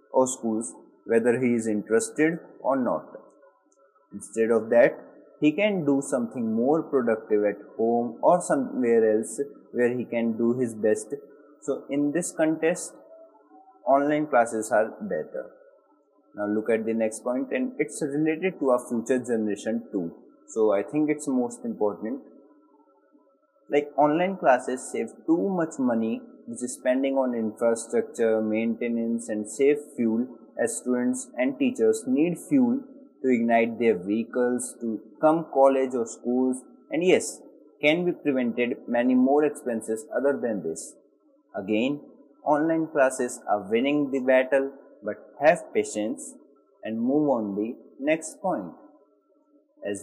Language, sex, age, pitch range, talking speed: Hindi, male, 20-39, 115-165 Hz, 140 wpm